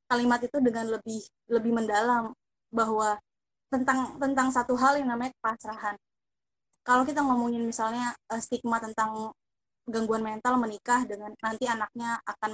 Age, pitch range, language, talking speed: 20-39, 220-255 Hz, Indonesian, 130 wpm